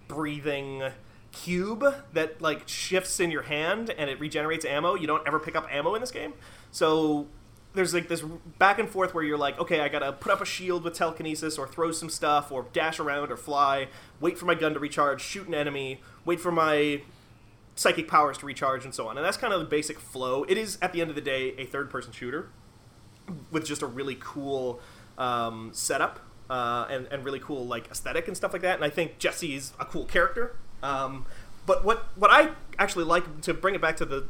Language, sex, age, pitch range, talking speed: English, male, 30-49, 135-170 Hz, 220 wpm